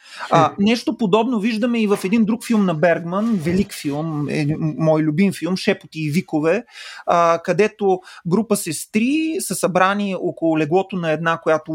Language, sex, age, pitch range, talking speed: Bulgarian, male, 30-49, 165-220 Hz, 165 wpm